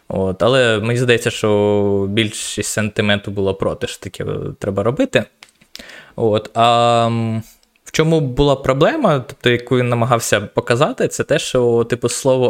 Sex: male